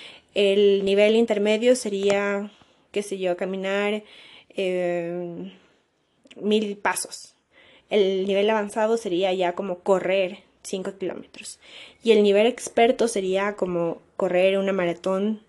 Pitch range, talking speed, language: 190-225 Hz, 110 wpm, Spanish